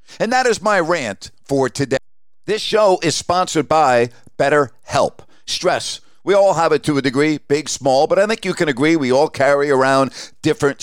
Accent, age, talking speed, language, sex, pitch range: American, 50-69, 190 wpm, English, male, 140-190 Hz